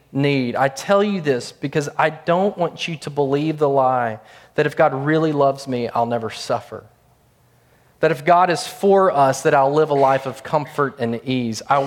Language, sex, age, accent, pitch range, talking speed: English, male, 30-49, American, 120-170 Hz, 195 wpm